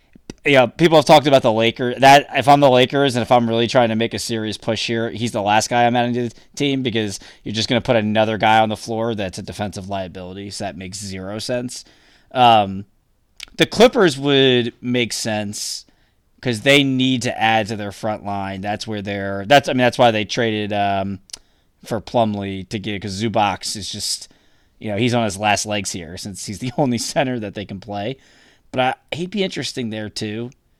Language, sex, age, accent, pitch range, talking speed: English, male, 20-39, American, 100-120 Hz, 220 wpm